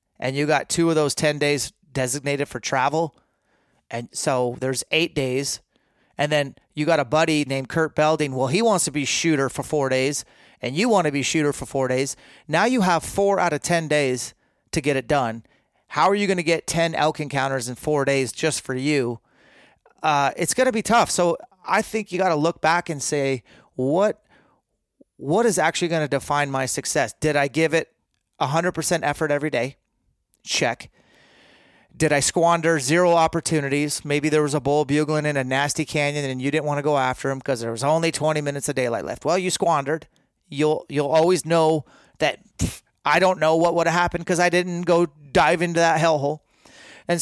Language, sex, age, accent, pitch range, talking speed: English, male, 30-49, American, 140-165 Hz, 205 wpm